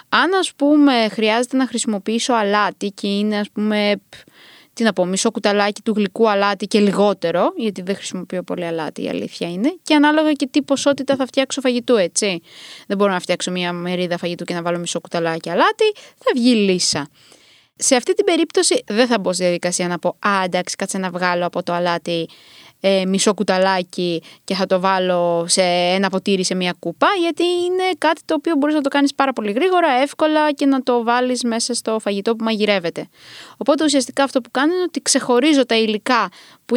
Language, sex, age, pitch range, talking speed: Greek, female, 20-39, 190-270 Hz, 190 wpm